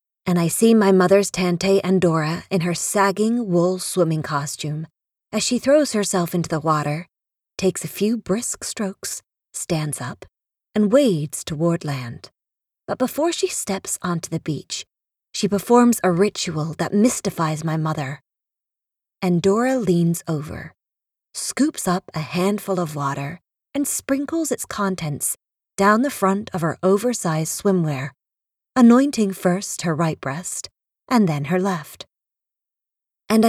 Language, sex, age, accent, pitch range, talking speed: English, female, 30-49, American, 160-210 Hz, 140 wpm